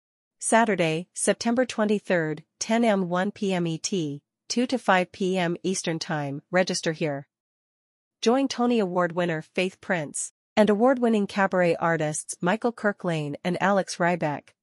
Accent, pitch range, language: American, 165-205 Hz, English